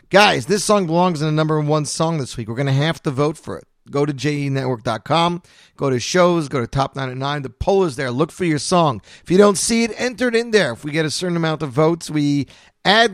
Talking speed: 265 wpm